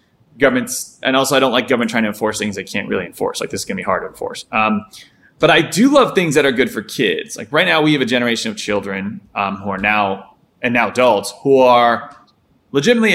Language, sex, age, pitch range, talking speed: English, male, 20-39, 110-135 Hz, 240 wpm